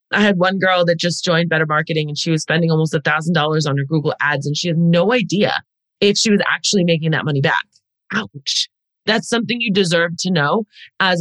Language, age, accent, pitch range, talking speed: English, 30-49, American, 160-210 Hz, 215 wpm